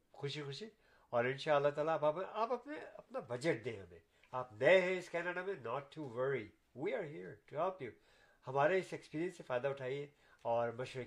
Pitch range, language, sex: 120-170 Hz, Urdu, male